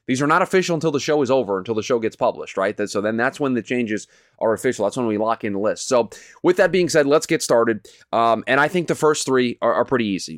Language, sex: English, male